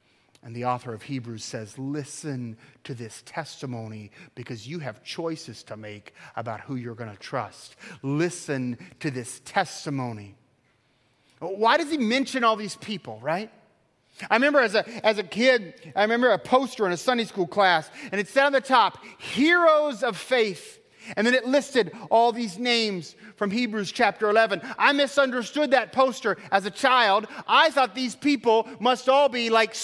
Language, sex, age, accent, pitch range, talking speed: English, male, 40-59, American, 165-270 Hz, 170 wpm